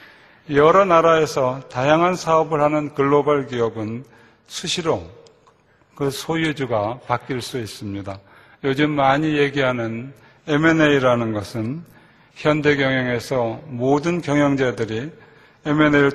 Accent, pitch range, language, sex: native, 120-155 Hz, Korean, male